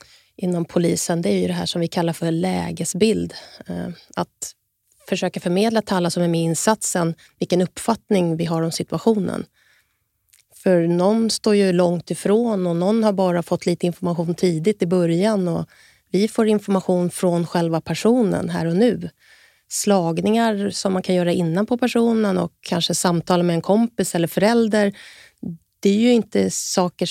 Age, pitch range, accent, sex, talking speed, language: 30-49, 170-205 Hz, Swedish, female, 165 wpm, English